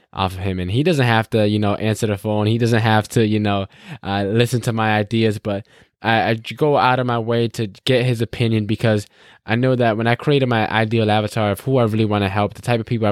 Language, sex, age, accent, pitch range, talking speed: English, male, 10-29, American, 100-115 Hz, 260 wpm